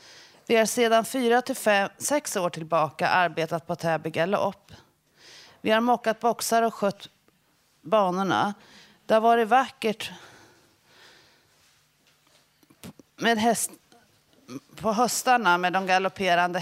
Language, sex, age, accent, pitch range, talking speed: Swedish, female, 40-59, native, 180-225 Hz, 110 wpm